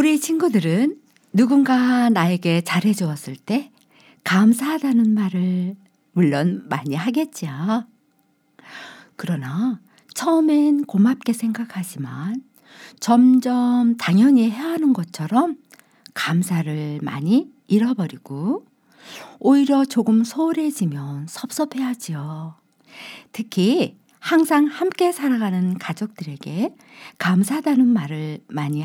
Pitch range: 180-270 Hz